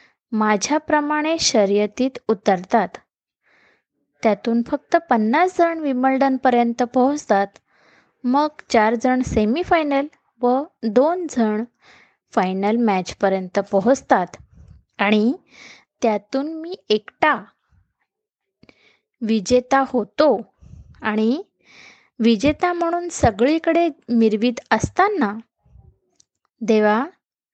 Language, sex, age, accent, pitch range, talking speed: Marathi, female, 20-39, native, 215-295 Hz, 70 wpm